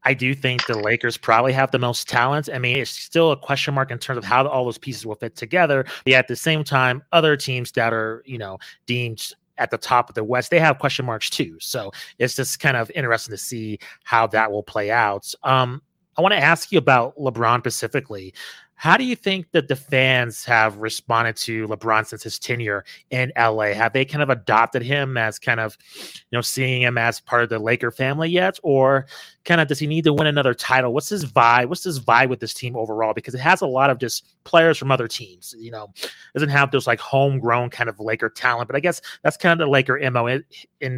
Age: 30-49